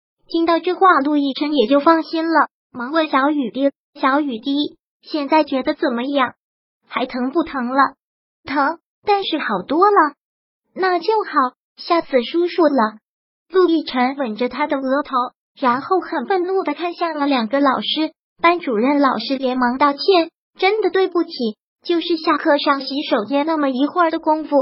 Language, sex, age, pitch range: Chinese, male, 20-39, 270-340 Hz